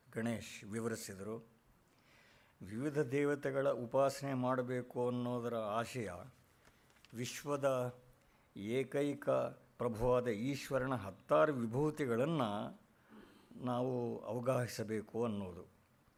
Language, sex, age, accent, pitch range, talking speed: Kannada, male, 60-79, native, 115-135 Hz, 65 wpm